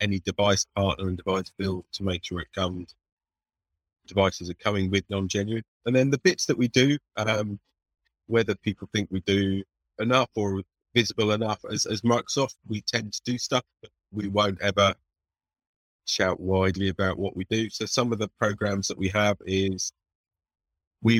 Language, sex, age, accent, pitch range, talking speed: English, male, 30-49, British, 90-105 Hz, 175 wpm